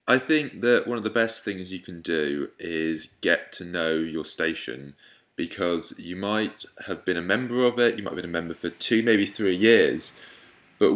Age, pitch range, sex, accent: 20-39, 85-105 Hz, male, British